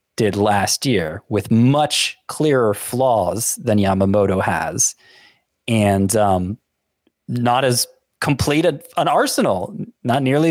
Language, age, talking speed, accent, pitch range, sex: English, 30-49, 115 wpm, American, 105-145 Hz, male